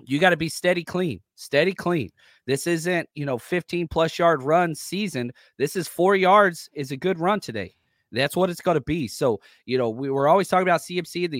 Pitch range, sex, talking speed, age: 130-175 Hz, male, 220 wpm, 30-49